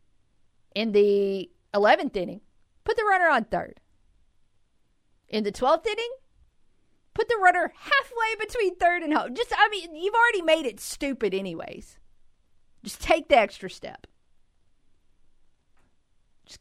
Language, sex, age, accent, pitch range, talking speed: English, female, 40-59, American, 170-255 Hz, 130 wpm